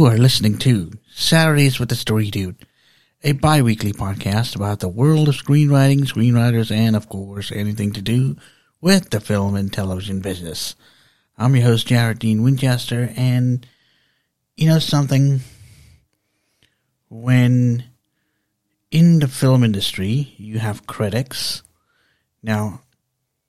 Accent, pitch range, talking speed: American, 105-130 Hz, 125 wpm